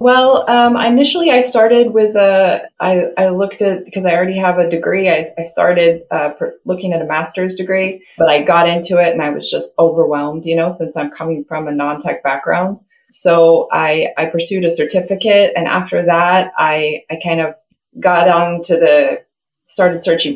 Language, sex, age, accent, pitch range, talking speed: English, female, 20-39, American, 165-205 Hz, 190 wpm